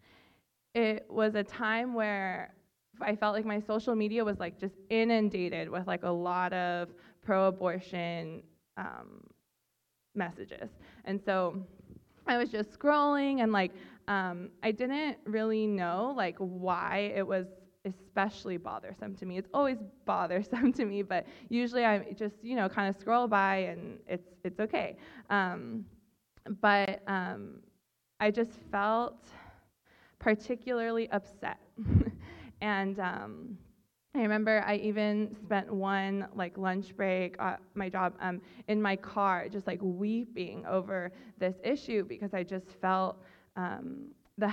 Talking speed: 135 wpm